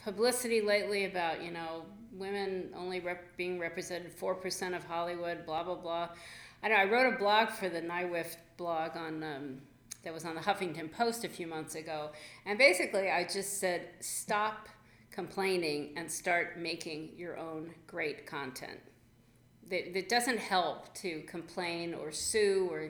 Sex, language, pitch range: female, English, 160-195 Hz